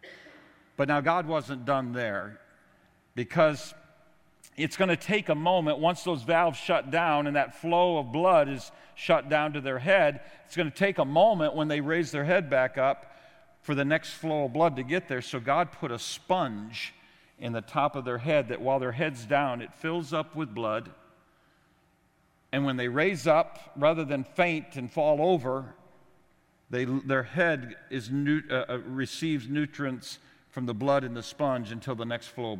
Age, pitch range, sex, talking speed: 50-69, 130-170 Hz, male, 190 wpm